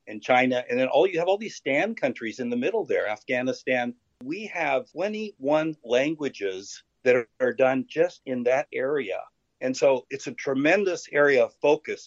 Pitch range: 130-200 Hz